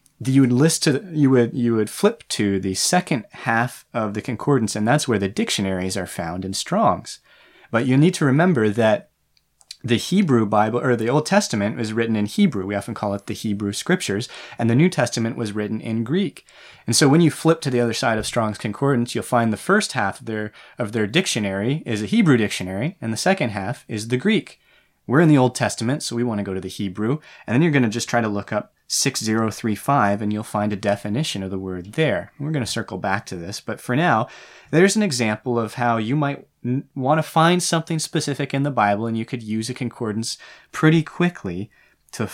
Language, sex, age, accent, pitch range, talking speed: English, male, 20-39, American, 105-145 Hz, 225 wpm